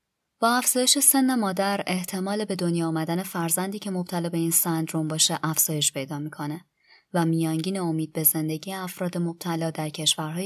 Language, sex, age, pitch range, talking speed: Persian, male, 20-39, 160-190 Hz, 155 wpm